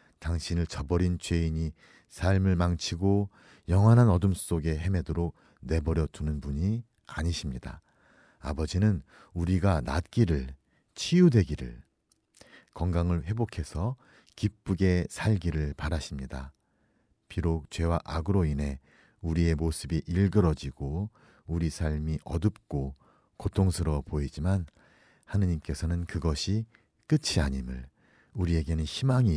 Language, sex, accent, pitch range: Korean, male, native, 75-100 Hz